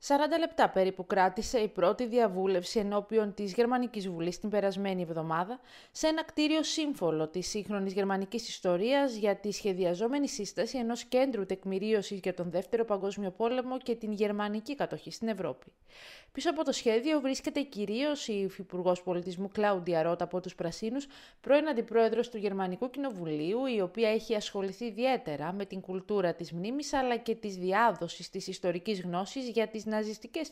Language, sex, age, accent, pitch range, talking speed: Greek, female, 20-39, native, 185-245 Hz, 155 wpm